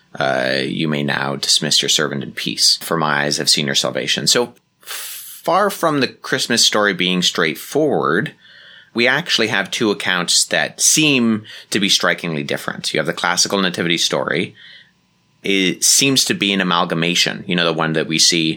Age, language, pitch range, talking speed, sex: 30-49, English, 80-115 Hz, 175 wpm, male